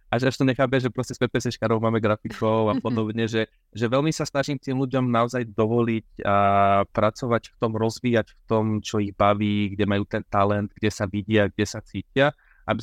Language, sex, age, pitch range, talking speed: Slovak, male, 20-39, 105-120 Hz, 200 wpm